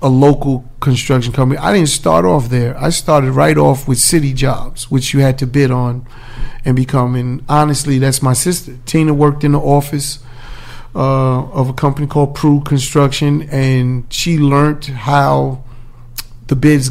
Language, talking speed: English, 165 wpm